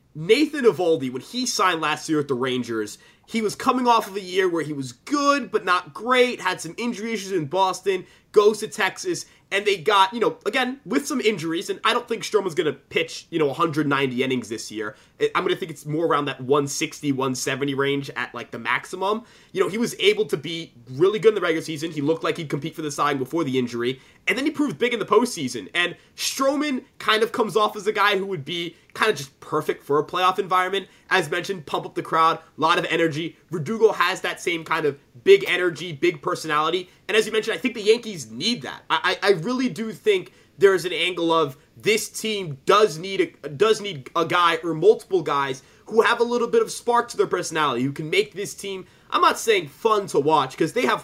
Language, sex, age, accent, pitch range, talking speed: English, male, 20-39, American, 160-235 Hz, 230 wpm